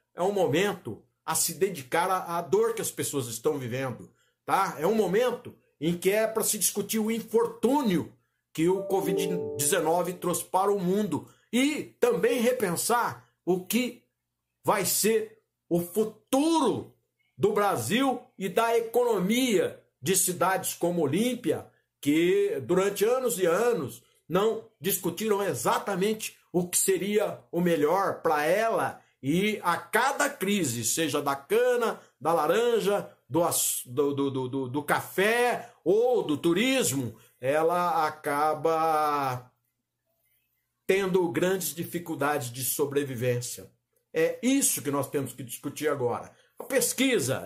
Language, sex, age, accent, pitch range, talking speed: Portuguese, male, 60-79, Brazilian, 150-230 Hz, 125 wpm